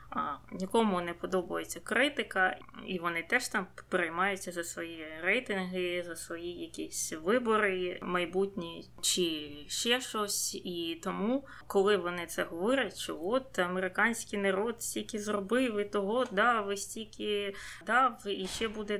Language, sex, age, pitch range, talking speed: Ukrainian, female, 20-39, 180-215 Hz, 135 wpm